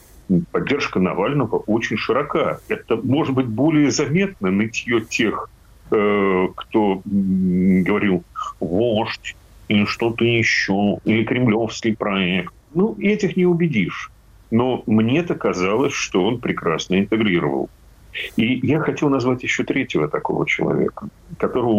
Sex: male